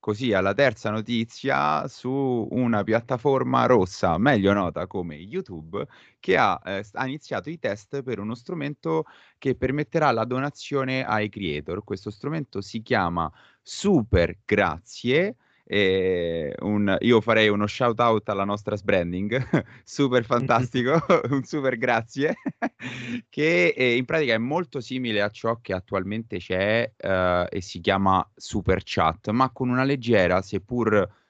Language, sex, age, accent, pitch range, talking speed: Italian, male, 30-49, native, 95-130 Hz, 135 wpm